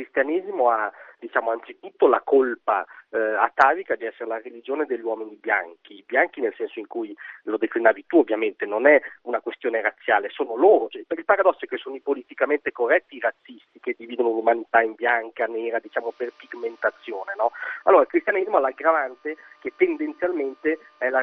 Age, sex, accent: 40-59, male, native